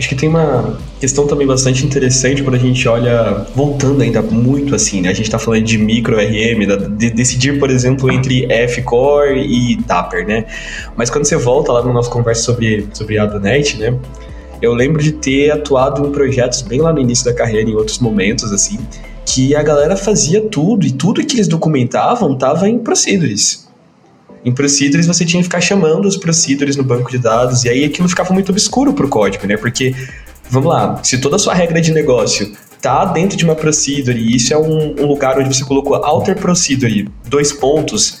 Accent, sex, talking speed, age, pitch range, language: Brazilian, male, 195 wpm, 20-39, 120-150 Hz, Portuguese